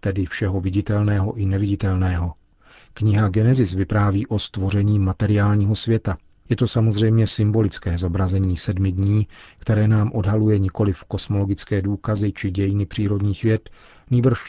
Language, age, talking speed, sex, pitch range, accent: Czech, 40-59, 125 wpm, male, 95-110 Hz, native